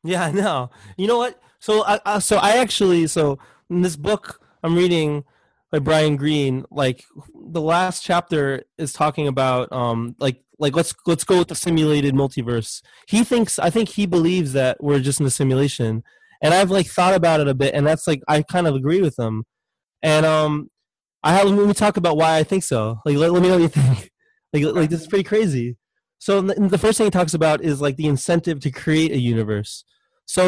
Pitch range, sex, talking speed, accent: 140-180 Hz, male, 215 wpm, American